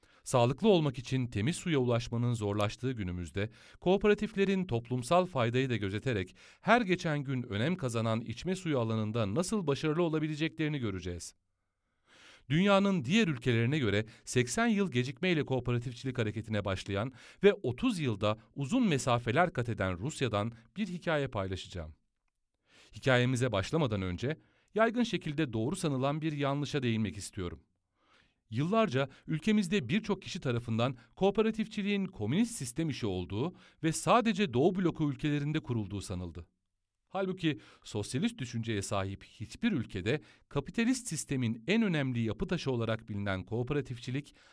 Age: 40-59